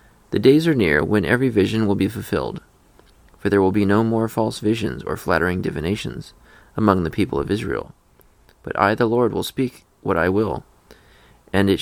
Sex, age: male, 30-49